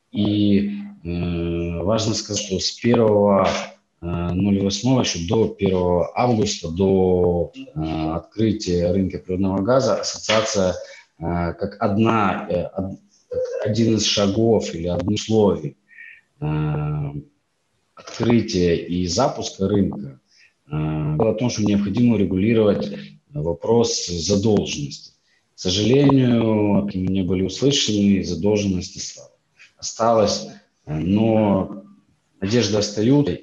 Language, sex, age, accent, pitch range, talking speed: Ukrainian, male, 30-49, native, 90-110 Hz, 95 wpm